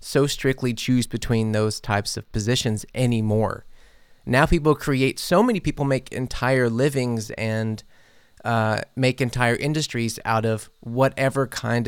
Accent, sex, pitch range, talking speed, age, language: American, male, 115-135 Hz, 135 wpm, 30-49, English